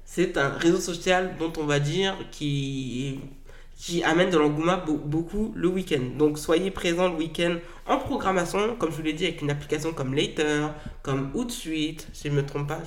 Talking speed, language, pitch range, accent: 190 wpm, French, 150-220 Hz, French